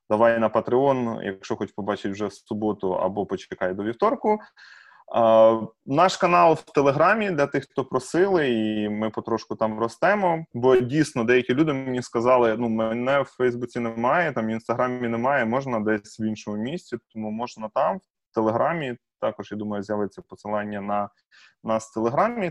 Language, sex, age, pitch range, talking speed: Ukrainian, male, 20-39, 110-140 Hz, 160 wpm